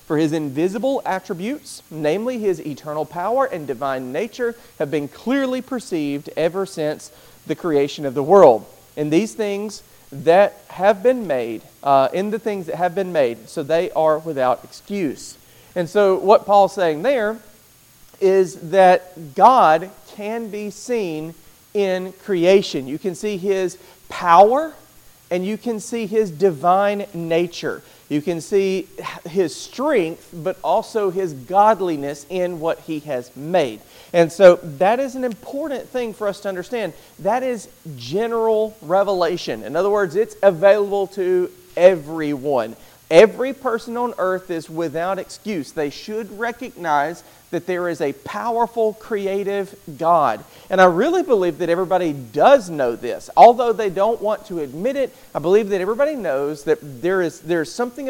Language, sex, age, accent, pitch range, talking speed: English, male, 40-59, American, 160-215 Hz, 155 wpm